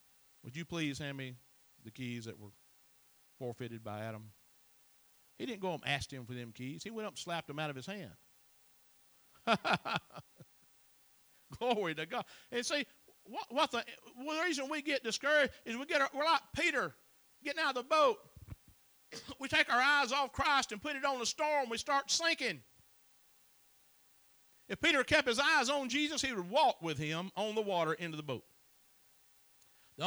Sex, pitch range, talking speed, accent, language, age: male, 140-220 Hz, 170 wpm, American, English, 50-69